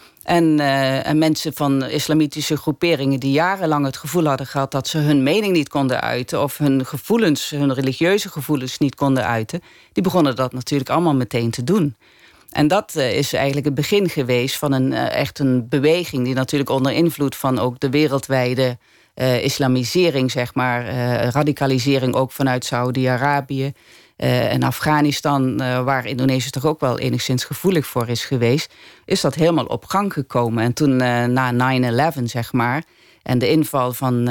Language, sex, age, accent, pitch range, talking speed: Dutch, female, 40-59, Dutch, 125-150 Hz, 170 wpm